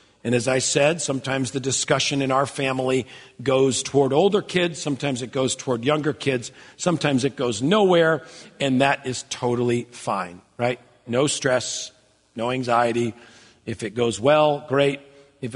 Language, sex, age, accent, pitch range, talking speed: English, male, 50-69, American, 125-160 Hz, 155 wpm